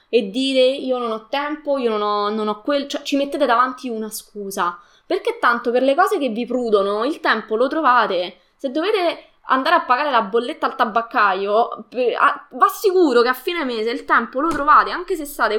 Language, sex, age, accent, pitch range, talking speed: Italian, female, 20-39, native, 215-295 Hz, 200 wpm